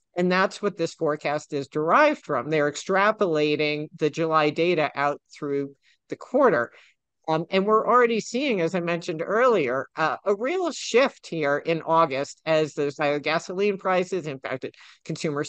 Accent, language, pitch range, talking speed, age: American, English, 150-190 Hz, 160 wpm, 50-69